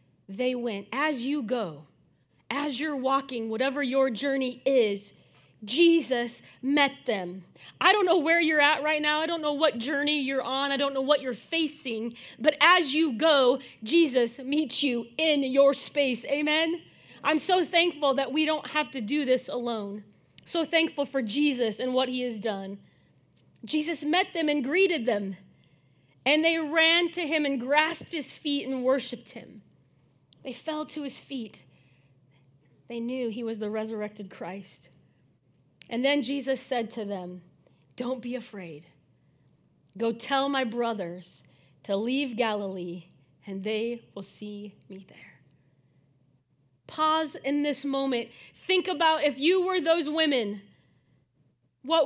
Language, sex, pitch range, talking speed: English, female, 210-300 Hz, 150 wpm